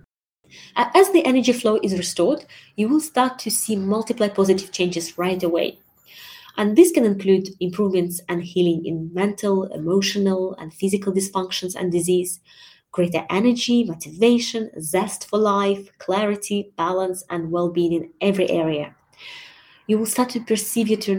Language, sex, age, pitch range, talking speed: English, female, 20-39, 175-225 Hz, 145 wpm